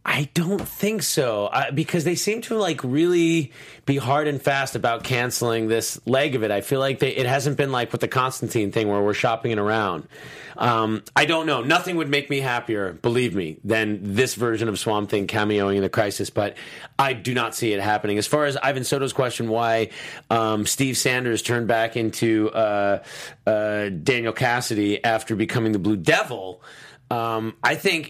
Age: 30-49